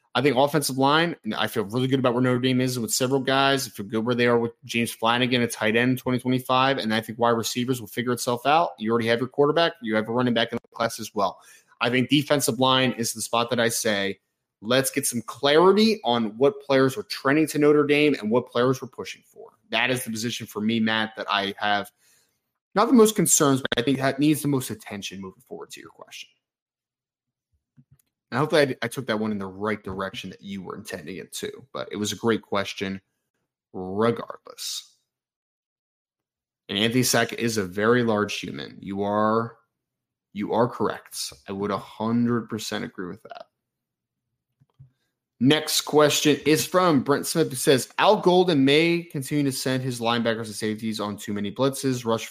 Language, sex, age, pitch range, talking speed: English, male, 20-39, 110-135 Hz, 205 wpm